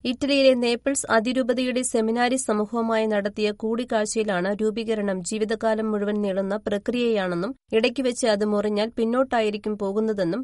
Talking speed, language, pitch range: 105 wpm, Malayalam, 215-250 Hz